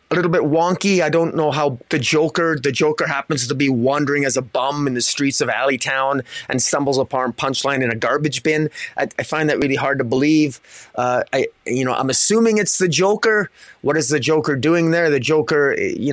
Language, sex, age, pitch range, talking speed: English, male, 30-49, 140-170 Hz, 215 wpm